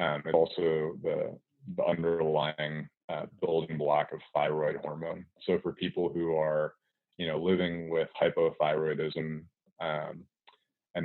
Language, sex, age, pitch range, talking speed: English, male, 30-49, 75-85 Hz, 130 wpm